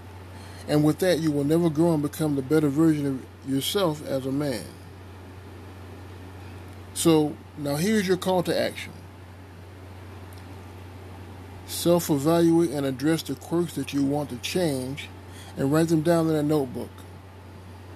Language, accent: English, American